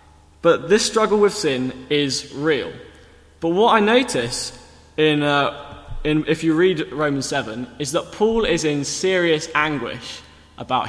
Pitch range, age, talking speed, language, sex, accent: 110-160 Hz, 10-29, 150 wpm, English, male, British